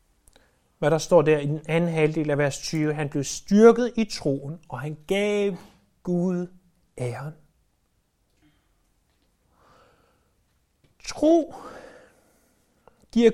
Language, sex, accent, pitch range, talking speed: Danish, male, native, 155-220 Hz, 105 wpm